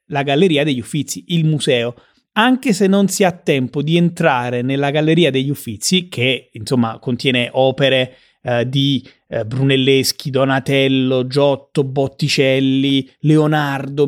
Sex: male